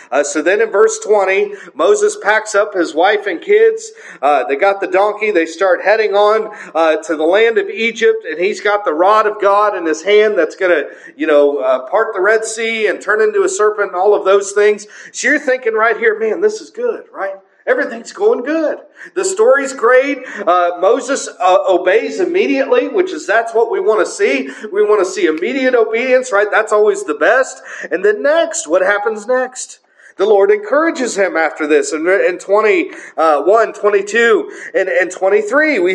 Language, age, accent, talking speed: English, 40-59, American, 195 wpm